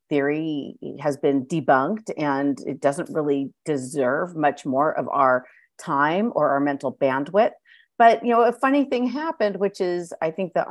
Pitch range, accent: 150-235 Hz, American